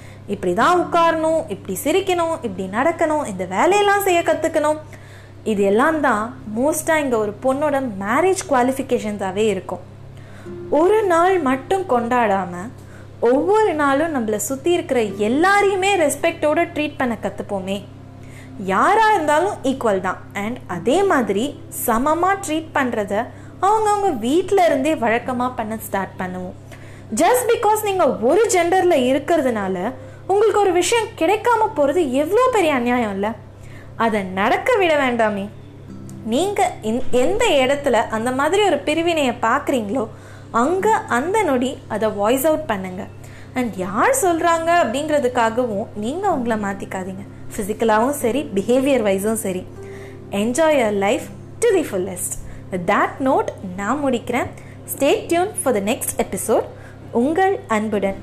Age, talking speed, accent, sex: 20-39, 50 wpm, native, female